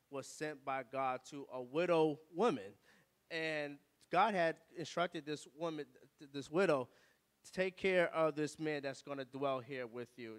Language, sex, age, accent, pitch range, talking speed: English, male, 20-39, American, 145-180 Hz, 170 wpm